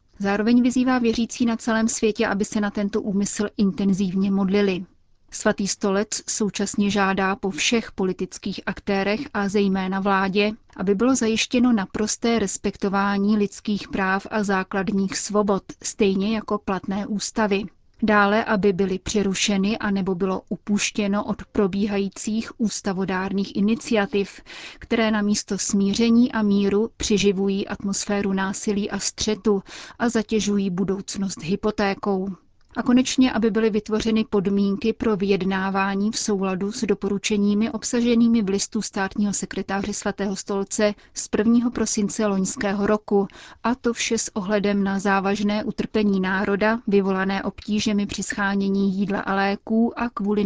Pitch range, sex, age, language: 195-220 Hz, female, 30-49, Czech